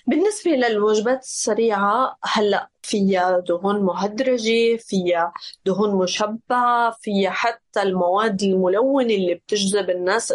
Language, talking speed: Arabic, 100 wpm